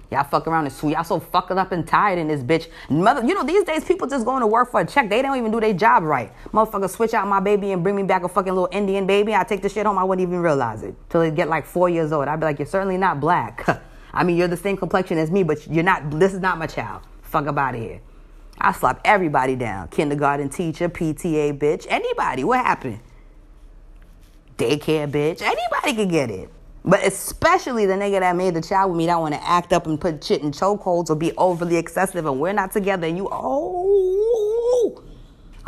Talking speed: 235 wpm